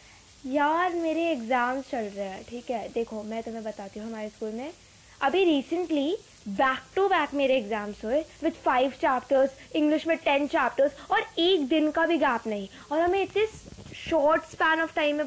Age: 20-39